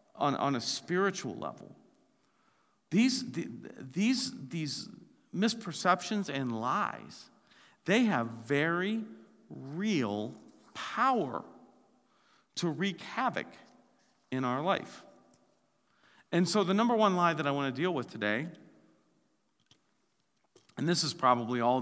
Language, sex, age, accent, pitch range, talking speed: English, male, 50-69, American, 120-175 Hz, 105 wpm